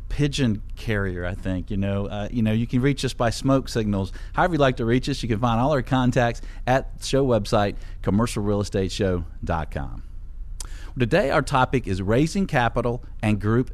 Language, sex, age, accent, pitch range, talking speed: English, male, 40-59, American, 95-120 Hz, 180 wpm